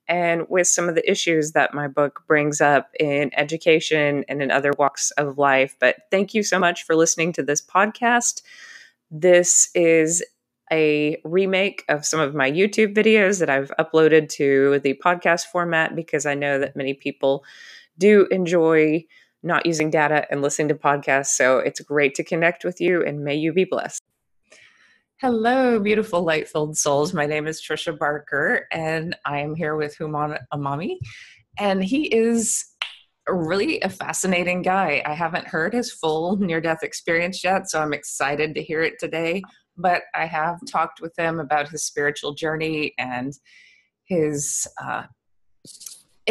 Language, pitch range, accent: English, 145-180 Hz, American